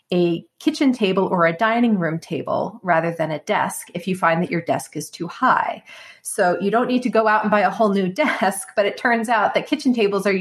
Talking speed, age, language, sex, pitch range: 240 wpm, 30-49, English, female, 180-225 Hz